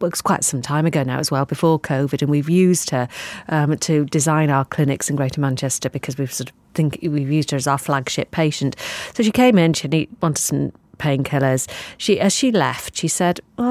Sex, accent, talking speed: female, British, 220 wpm